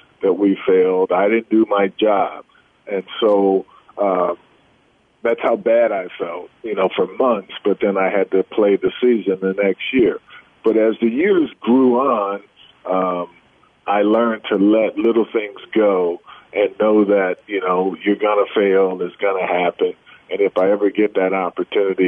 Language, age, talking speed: English, 40-59, 180 wpm